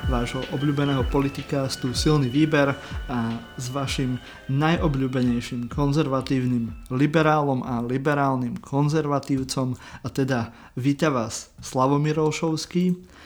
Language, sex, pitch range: Slovak, male, 130-150 Hz